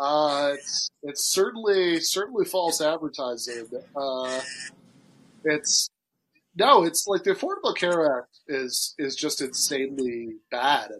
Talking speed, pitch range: 120 wpm, 130-165 Hz